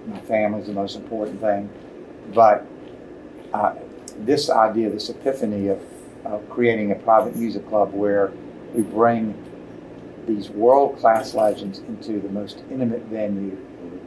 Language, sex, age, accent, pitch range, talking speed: English, male, 60-79, American, 100-115 Hz, 130 wpm